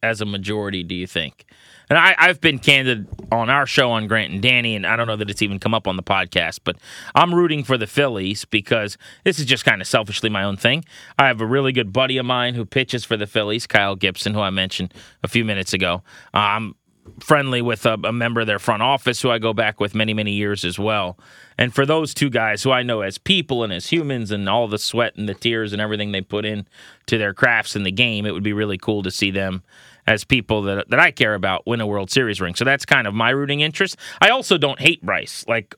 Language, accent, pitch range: English, American, 100-125 Hz